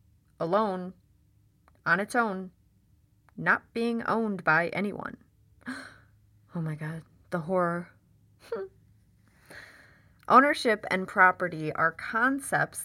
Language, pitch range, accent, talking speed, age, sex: English, 140-205 Hz, American, 90 wpm, 30-49, female